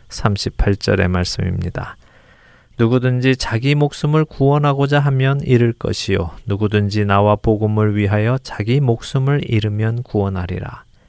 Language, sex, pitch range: Korean, male, 100-130 Hz